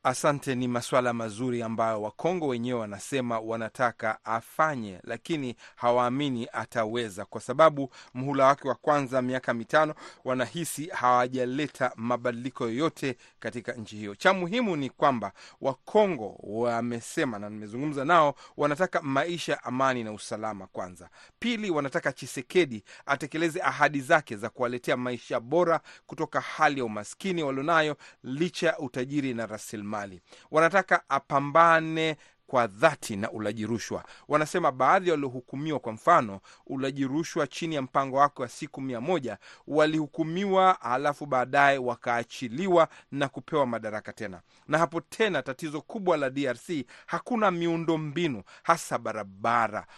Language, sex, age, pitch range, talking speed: Swahili, male, 30-49, 120-165 Hz, 125 wpm